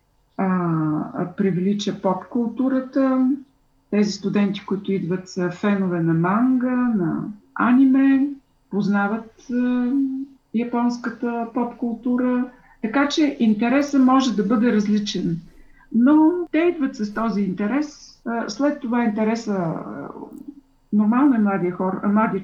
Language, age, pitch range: Bulgarian, 50-69, 195-255 Hz